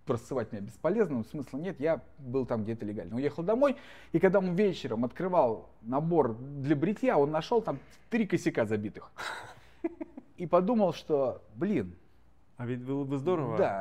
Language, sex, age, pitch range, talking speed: Russian, male, 20-39, 120-195 Hz, 155 wpm